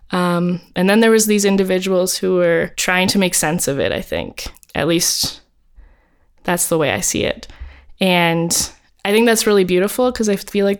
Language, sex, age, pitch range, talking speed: English, female, 20-39, 175-200 Hz, 195 wpm